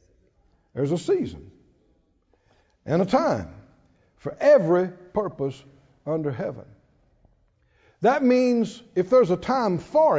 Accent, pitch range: American, 160-235 Hz